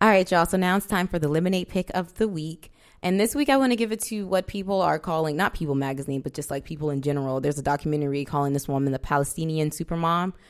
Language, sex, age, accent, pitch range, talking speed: English, female, 20-39, American, 145-170 Hz, 255 wpm